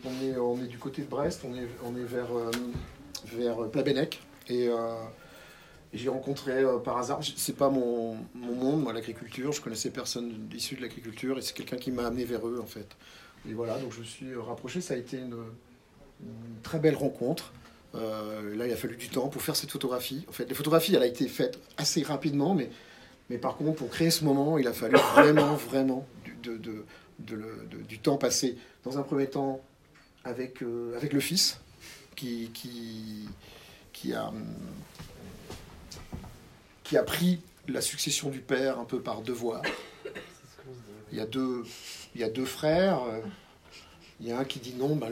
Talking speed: 195 wpm